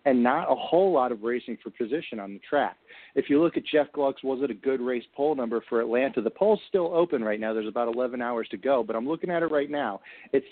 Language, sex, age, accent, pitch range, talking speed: English, male, 40-59, American, 115-155 Hz, 270 wpm